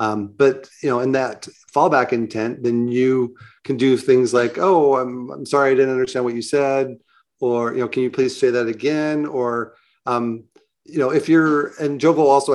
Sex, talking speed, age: male, 200 wpm, 40-59